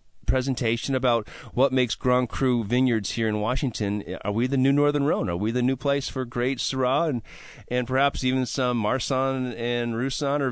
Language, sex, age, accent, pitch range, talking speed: English, male, 40-59, American, 110-135 Hz, 190 wpm